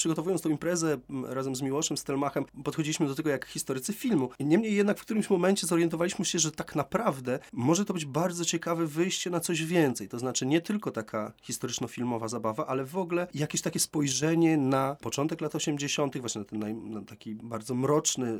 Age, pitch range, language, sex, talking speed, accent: 30-49, 120-170 Hz, Polish, male, 190 wpm, native